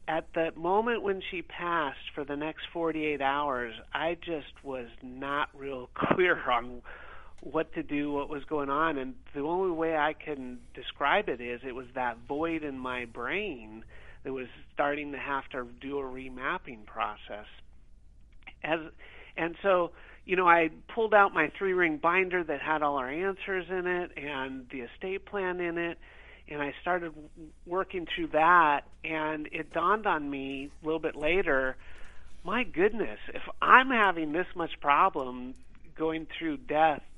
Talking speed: 165 wpm